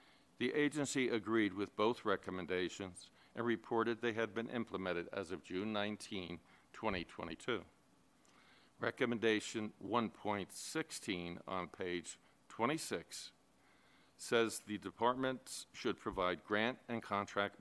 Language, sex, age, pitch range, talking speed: English, male, 50-69, 95-115 Hz, 100 wpm